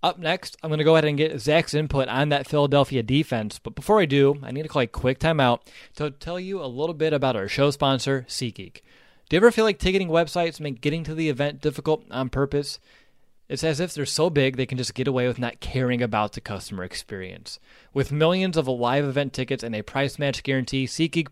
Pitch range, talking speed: 125-155 Hz, 230 wpm